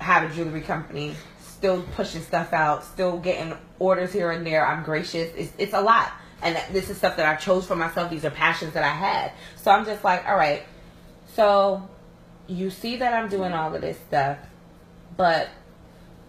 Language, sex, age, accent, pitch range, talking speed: English, female, 20-39, American, 145-185 Hz, 190 wpm